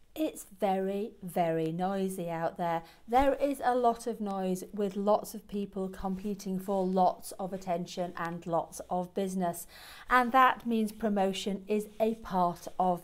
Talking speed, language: 150 wpm, English